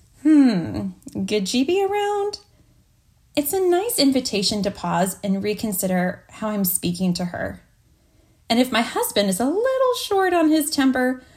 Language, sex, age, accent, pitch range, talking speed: English, female, 20-39, American, 185-250 Hz, 145 wpm